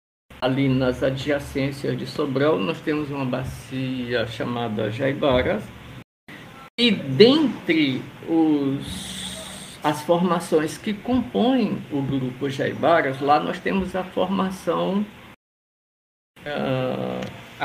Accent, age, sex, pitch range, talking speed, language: Brazilian, 50-69, male, 130-210 Hz, 90 wpm, Portuguese